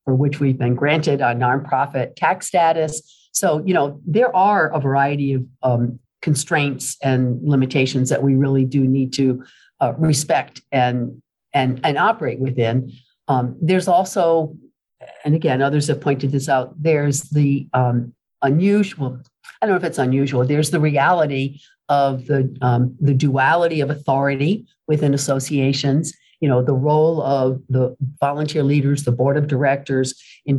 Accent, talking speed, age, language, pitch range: American, 155 wpm, 50-69, English, 130-150 Hz